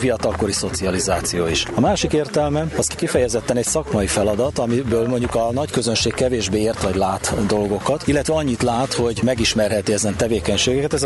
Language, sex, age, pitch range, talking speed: Hungarian, male, 40-59, 100-125 Hz, 155 wpm